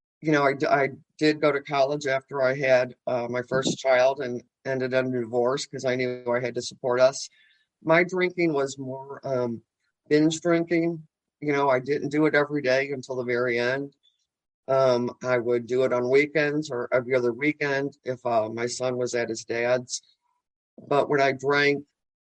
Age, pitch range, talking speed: 50-69, 125-145 Hz, 190 wpm